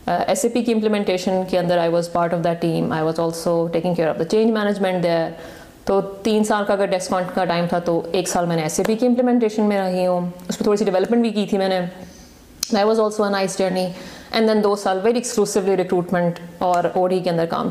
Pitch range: 180-220 Hz